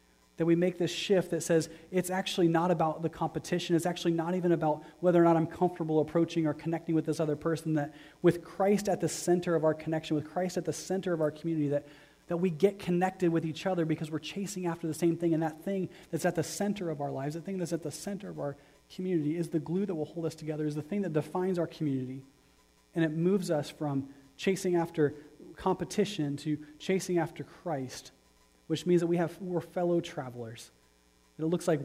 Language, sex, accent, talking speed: English, male, American, 225 wpm